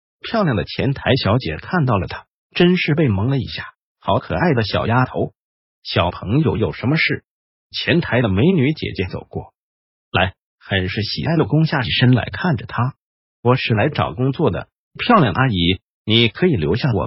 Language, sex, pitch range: Chinese, male, 110-155 Hz